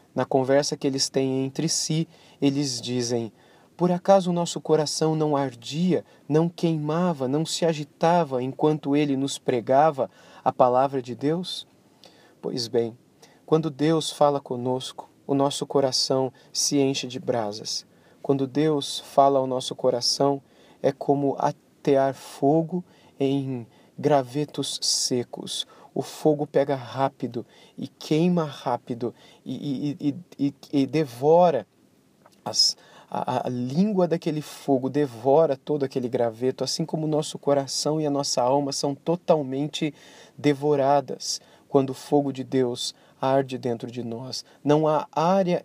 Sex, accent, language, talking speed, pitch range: male, Brazilian, Portuguese, 130 wpm, 130-155 Hz